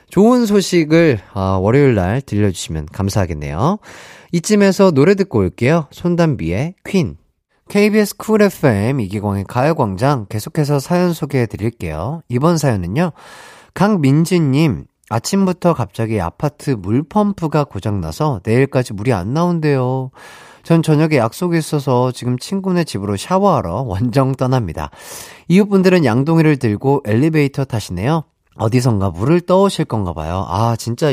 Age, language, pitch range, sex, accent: 30-49, Korean, 105-165 Hz, male, native